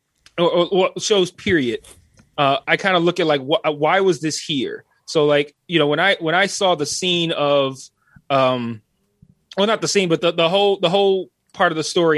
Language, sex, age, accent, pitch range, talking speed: English, male, 20-39, American, 145-175 Hz, 205 wpm